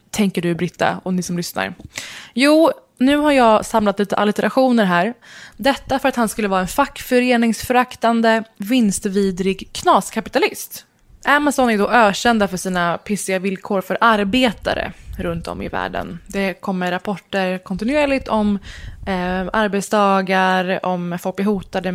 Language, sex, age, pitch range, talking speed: Swedish, female, 20-39, 185-235 Hz, 135 wpm